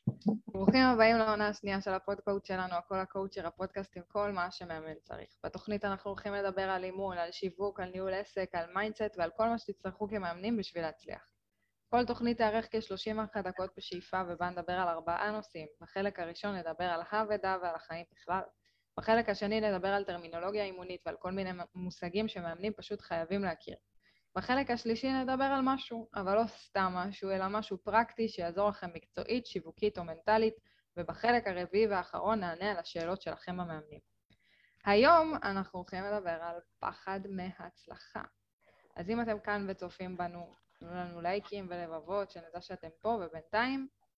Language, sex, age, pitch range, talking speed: Hebrew, female, 20-39, 175-215 Hz, 160 wpm